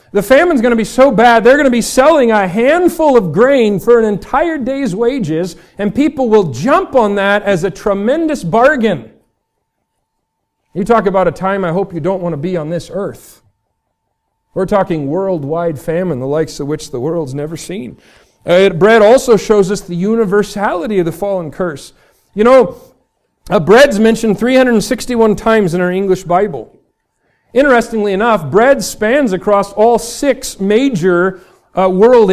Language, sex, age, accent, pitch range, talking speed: English, male, 40-59, American, 190-235 Hz, 165 wpm